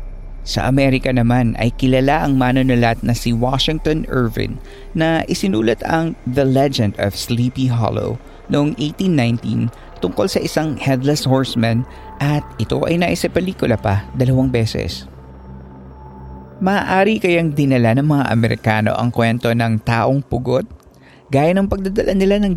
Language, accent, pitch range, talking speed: Filipino, native, 110-140 Hz, 130 wpm